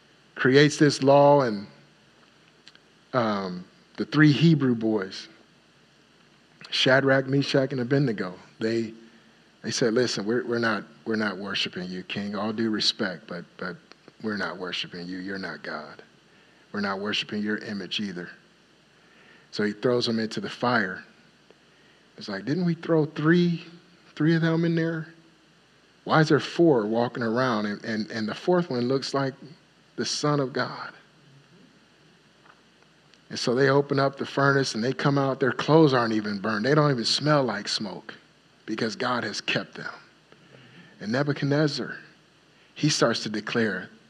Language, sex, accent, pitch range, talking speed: English, male, American, 110-145 Hz, 150 wpm